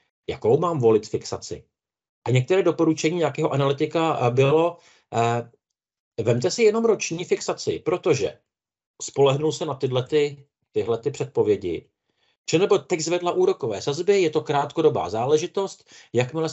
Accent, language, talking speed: native, Czech, 130 wpm